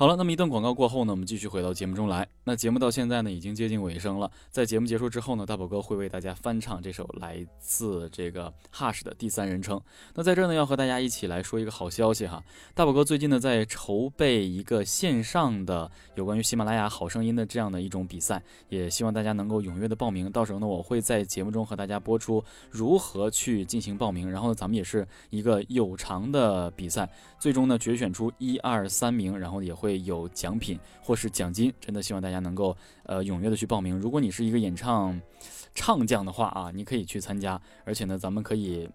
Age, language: 20-39, Chinese